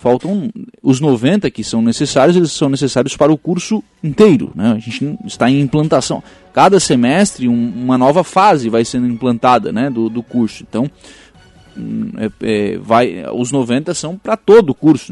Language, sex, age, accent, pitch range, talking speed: Portuguese, male, 20-39, Brazilian, 125-185 Hz, 170 wpm